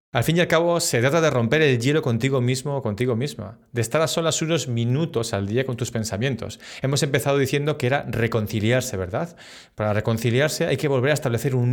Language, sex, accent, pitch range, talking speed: Spanish, male, Spanish, 110-145 Hz, 215 wpm